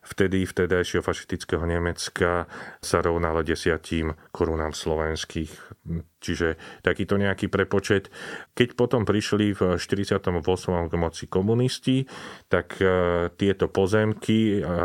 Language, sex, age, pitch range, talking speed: Slovak, male, 40-59, 85-105 Hz, 95 wpm